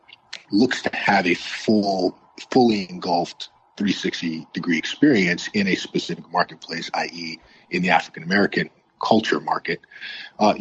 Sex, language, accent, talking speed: male, English, American, 140 wpm